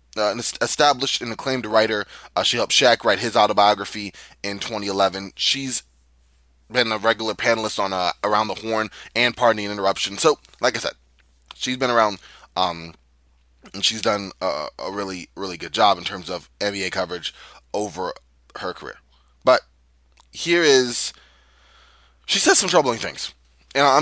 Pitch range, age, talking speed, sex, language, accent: 90-130 Hz, 20-39, 155 wpm, male, English, American